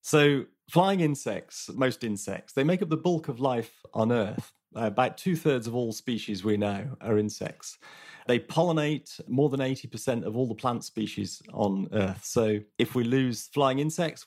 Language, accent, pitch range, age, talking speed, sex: English, British, 110-145 Hz, 30-49, 175 wpm, male